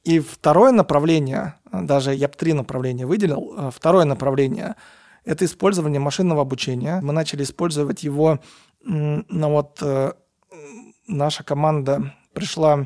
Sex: male